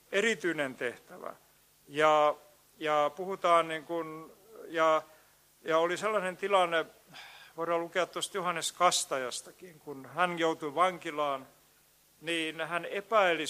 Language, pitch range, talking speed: Finnish, 155-185 Hz, 105 wpm